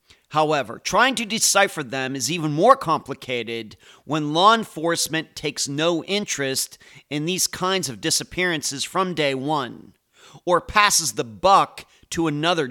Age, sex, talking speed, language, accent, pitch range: 40-59, male, 135 wpm, English, American, 140-190 Hz